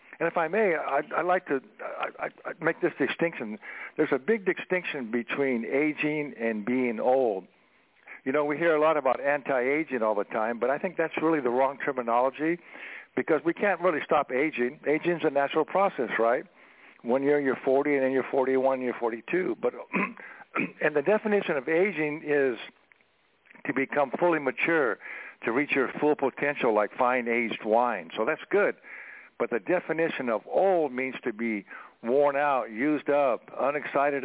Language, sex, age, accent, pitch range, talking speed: English, male, 60-79, American, 120-150 Hz, 170 wpm